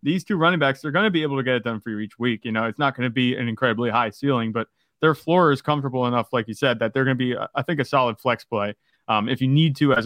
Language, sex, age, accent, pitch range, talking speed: English, male, 30-49, American, 125-155 Hz, 320 wpm